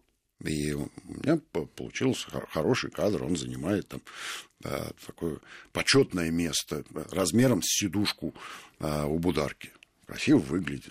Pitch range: 70-95 Hz